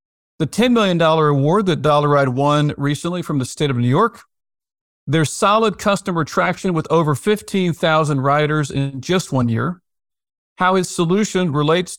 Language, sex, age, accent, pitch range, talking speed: English, male, 40-59, American, 145-180 Hz, 155 wpm